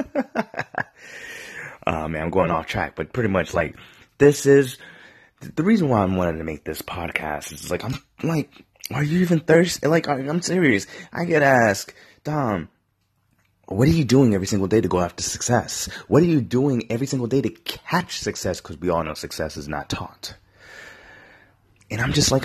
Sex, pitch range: male, 90-140 Hz